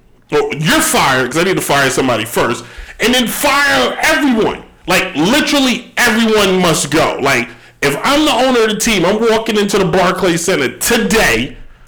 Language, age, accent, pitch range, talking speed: English, 40-59, American, 160-220 Hz, 165 wpm